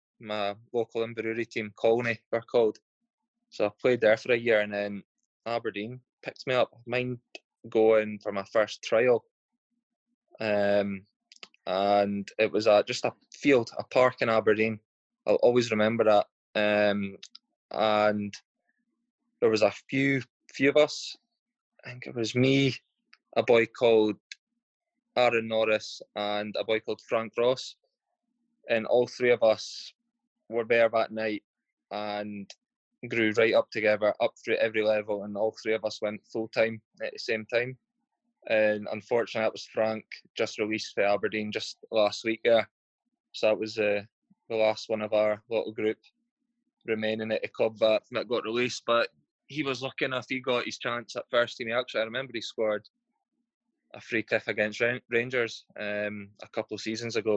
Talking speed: 160 wpm